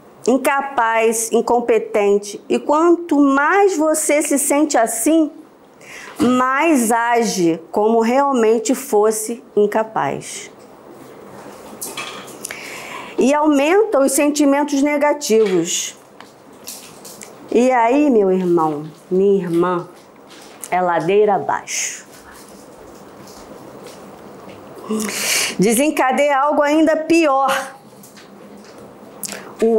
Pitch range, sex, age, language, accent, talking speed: 220-295 Hz, female, 40-59, Portuguese, Brazilian, 70 wpm